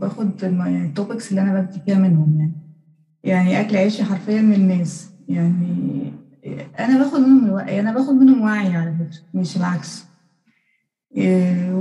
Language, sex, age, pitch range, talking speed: Arabic, female, 20-39, 170-205 Hz, 140 wpm